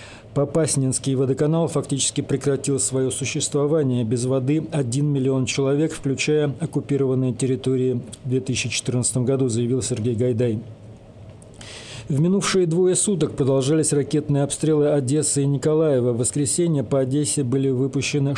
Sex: male